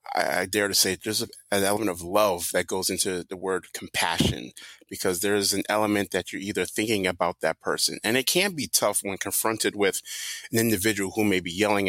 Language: English